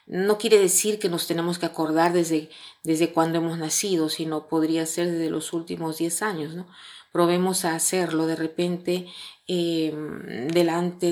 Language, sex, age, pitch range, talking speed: Spanish, female, 30-49, 155-175 Hz, 155 wpm